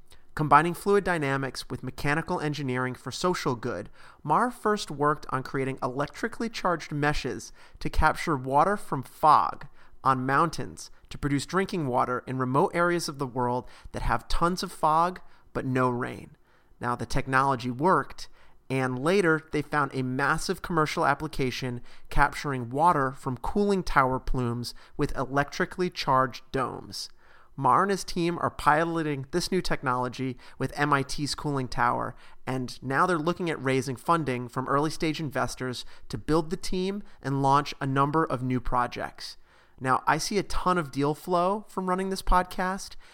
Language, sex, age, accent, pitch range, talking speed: English, male, 30-49, American, 130-170 Hz, 155 wpm